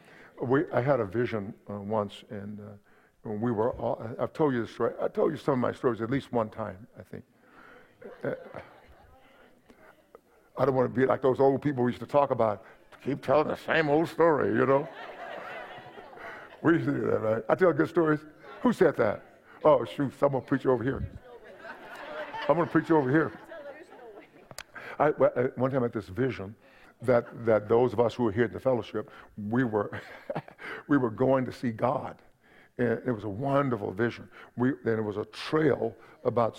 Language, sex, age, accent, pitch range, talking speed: English, male, 50-69, American, 115-140 Hz, 195 wpm